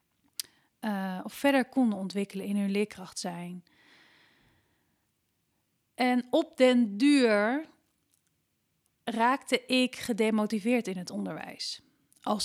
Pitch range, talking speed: 200-250 Hz, 95 wpm